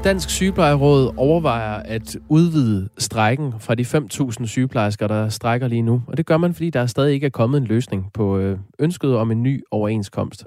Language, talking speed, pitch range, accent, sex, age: Danish, 185 wpm, 110-150 Hz, native, male, 20-39